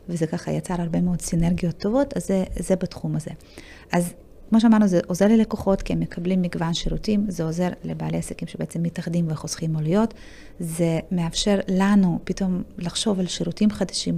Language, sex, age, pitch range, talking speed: Hebrew, female, 30-49, 170-205 Hz, 165 wpm